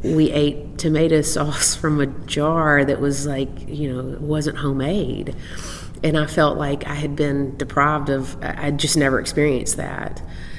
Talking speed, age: 155 wpm, 30-49